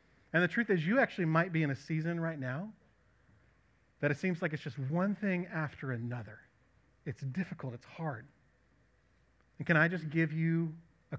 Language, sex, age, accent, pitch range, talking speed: English, male, 30-49, American, 140-195 Hz, 180 wpm